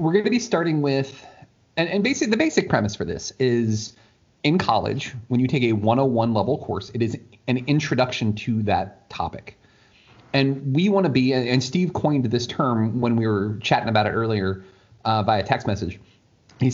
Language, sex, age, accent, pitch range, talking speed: English, male, 30-49, American, 110-145 Hz, 185 wpm